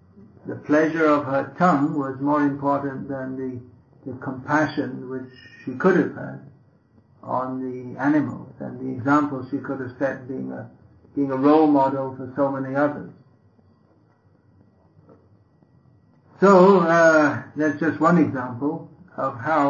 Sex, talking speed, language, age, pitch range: male, 135 wpm, English, 60-79, 130-150 Hz